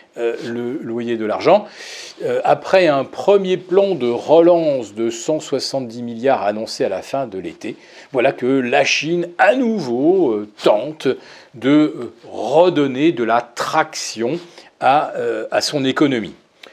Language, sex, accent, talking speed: French, male, French, 145 wpm